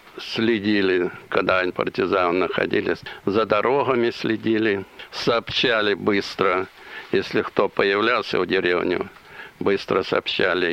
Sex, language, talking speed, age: male, Russian, 95 wpm, 60-79